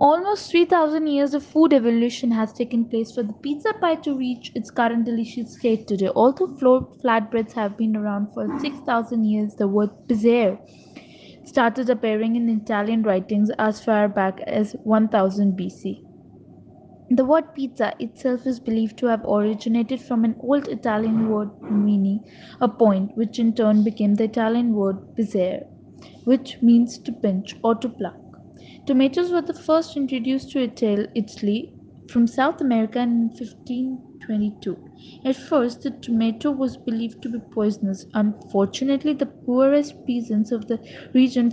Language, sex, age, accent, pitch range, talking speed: English, female, 20-39, Indian, 215-255 Hz, 150 wpm